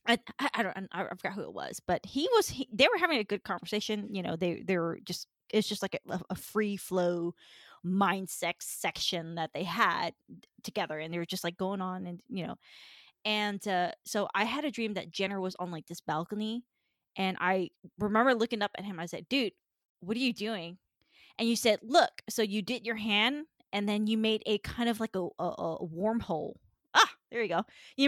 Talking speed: 215 wpm